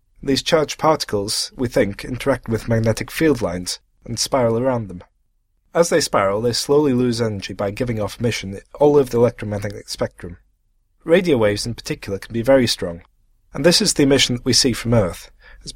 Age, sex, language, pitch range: 30-49, male, English, 105-140 Hz